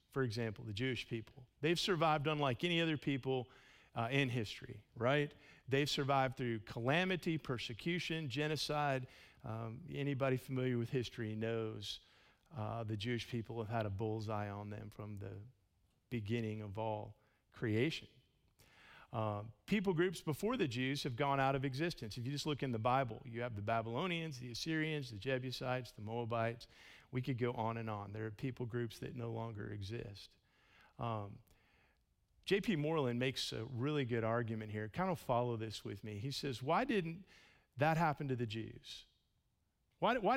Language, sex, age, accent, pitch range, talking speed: English, male, 50-69, American, 110-150 Hz, 165 wpm